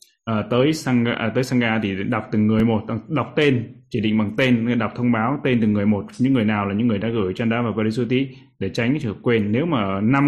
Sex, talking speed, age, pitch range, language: male, 250 wpm, 20-39, 110-135 Hz, Vietnamese